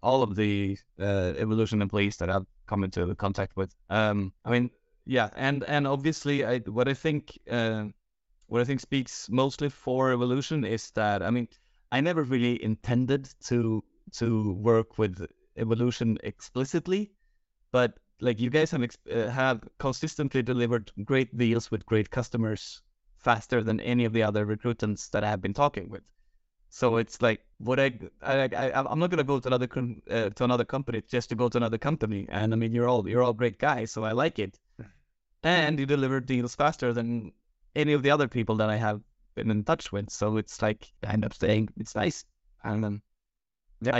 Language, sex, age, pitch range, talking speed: English, male, 30-49, 105-130 Hz, 190 wpm